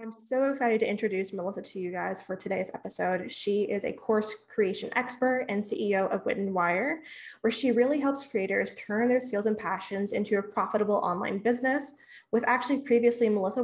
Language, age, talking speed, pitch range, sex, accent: English, 20-39, 185 wpm, 190-235 Hz, female, American